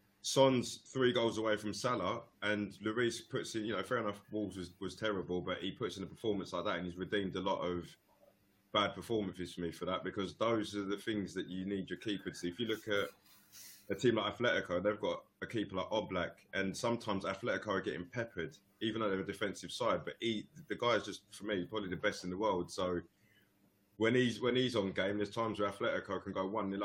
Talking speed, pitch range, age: 230 wpm, 90-105 Hz, 20-39